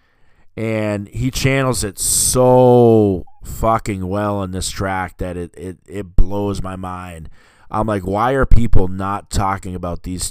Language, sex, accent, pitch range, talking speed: English, male, American, 90-110 Hz, 150 wpm